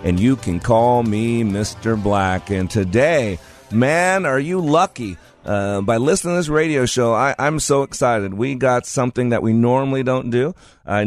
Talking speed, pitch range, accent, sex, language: 175 wpm, 100-125 Hz, American, male, English